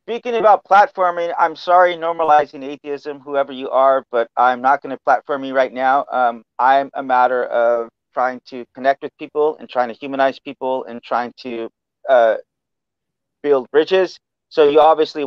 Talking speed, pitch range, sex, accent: 170 wpm, 125-150 Hz, male, American